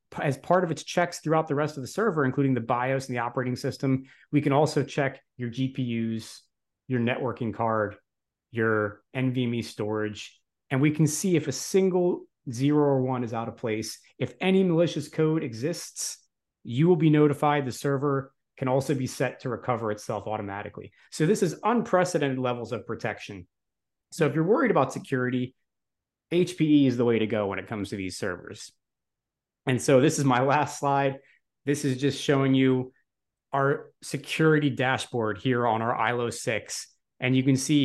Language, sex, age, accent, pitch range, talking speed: English, male, 30-49, American, 115-145 Hz, 180 wpm